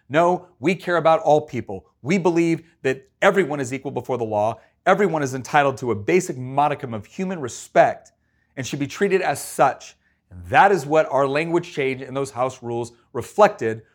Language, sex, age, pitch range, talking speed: English, male, 30-49, 130-170 Hz, 185 wpm